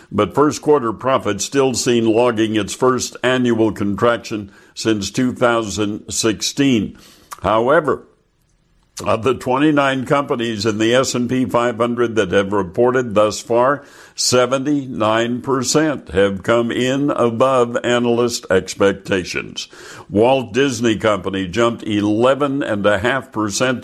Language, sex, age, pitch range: English, male, 60-79, 105-130 Hz